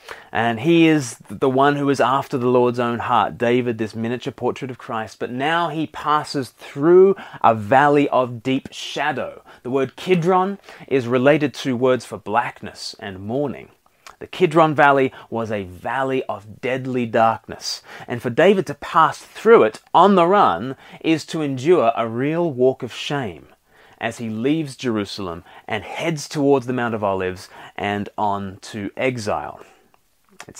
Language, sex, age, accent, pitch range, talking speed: English, male, 30-49, Australian, 110-145 Hz, 160 wpm